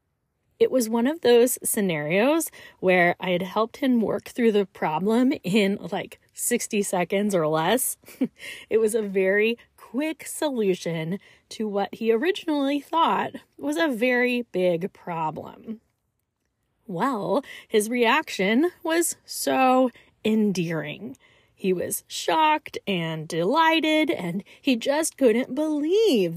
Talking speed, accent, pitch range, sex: 120 wpm, American, 195-295 Hz, female